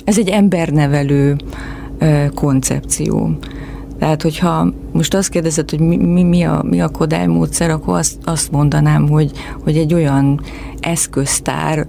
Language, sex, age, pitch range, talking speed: Hungarian, female, 30-49, 140-170 Hz, 135 wpm